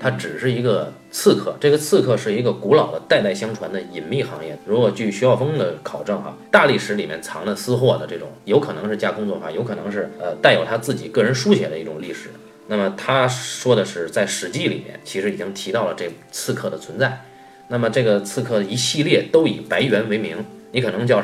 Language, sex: Chinese, male